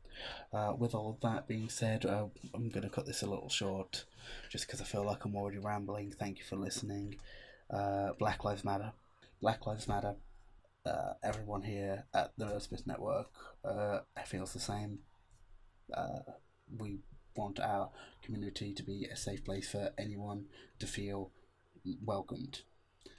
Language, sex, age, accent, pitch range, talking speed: English, male, 20-39, British, 100-110 Hz, 155 wpm